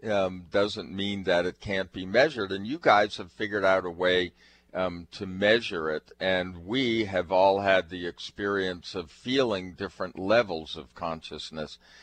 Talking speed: 165 wpm